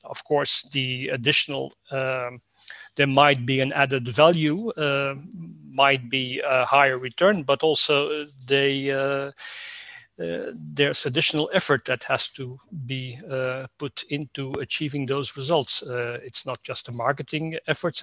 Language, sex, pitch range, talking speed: English, male, 130-155 Hz, 140 wpm